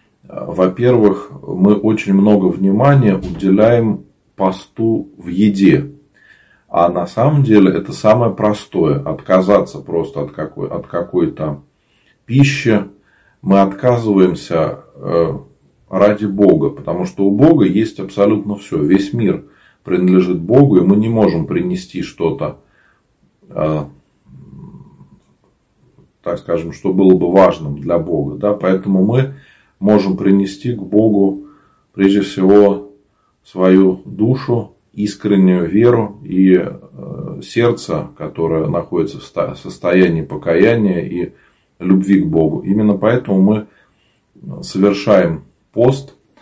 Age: 40-59